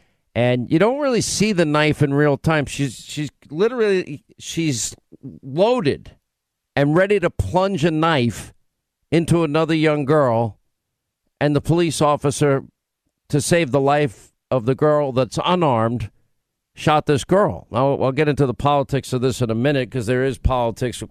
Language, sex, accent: English, male, American